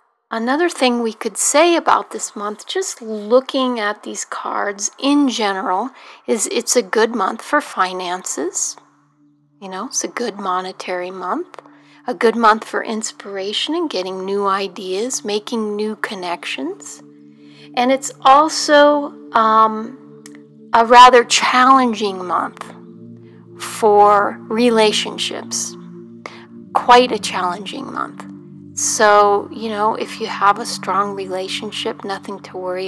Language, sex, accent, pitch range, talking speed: English, female, American, 185-235 Hz, 120 wpm